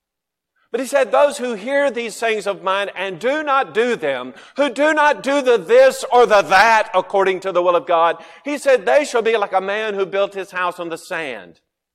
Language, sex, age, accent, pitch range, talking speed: English, male, 50-69, American, 175-235 Hz, 225 wpm